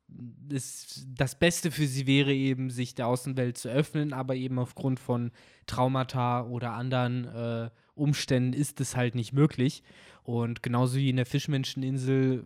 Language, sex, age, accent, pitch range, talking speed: German, male, 20-39, German, 120-140 Hz, 155 wpm